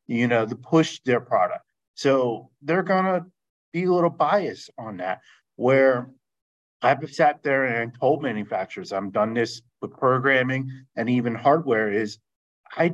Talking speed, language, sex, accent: 155 wpm, English, male, American